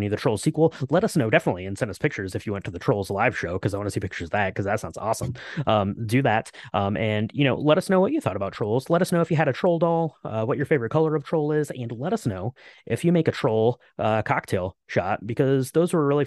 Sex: male